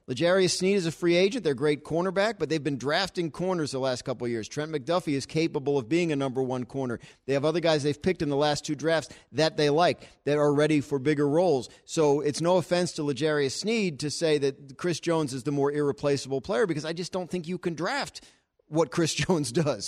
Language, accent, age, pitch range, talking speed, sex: English, American, 40-59, 140-160 Hz, 240 wpm, male